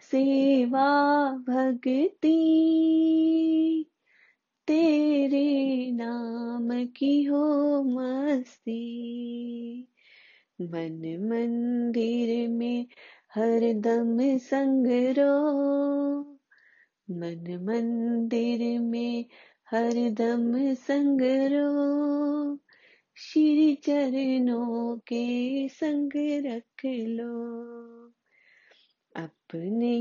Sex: female